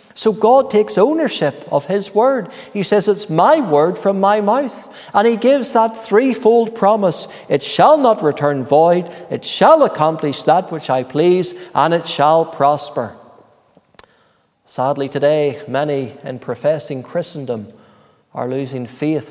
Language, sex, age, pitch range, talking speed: English, male, 40-59, 145-225 Hz, 145 wpm